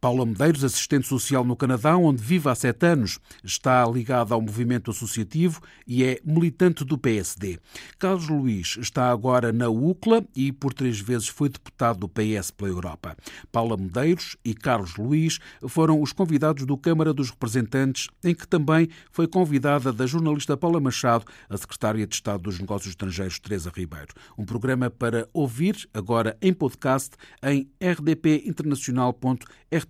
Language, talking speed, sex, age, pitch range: Portuguese, 155 wpm, male, 50-69, 115-155 Hz